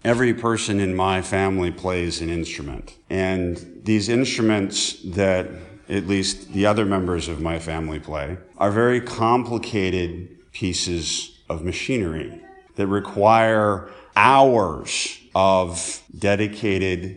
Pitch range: 85-105 Hz